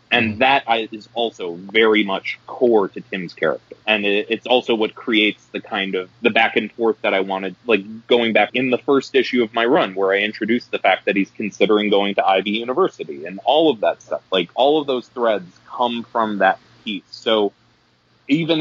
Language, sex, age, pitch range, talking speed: English, male, 20-39, 100-120 Hz, 205 wpm